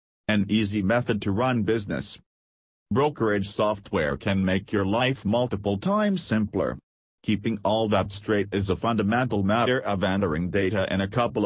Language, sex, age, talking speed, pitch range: English, male, 40-59, 150 wpm, 95-115 Hz